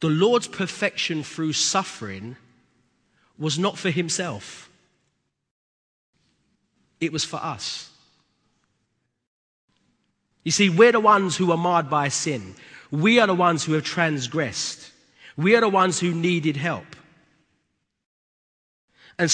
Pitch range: 150-195 Hz